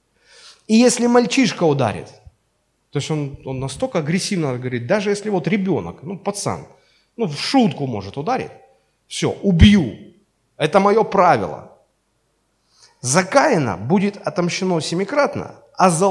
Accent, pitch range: native, 120-185 Hz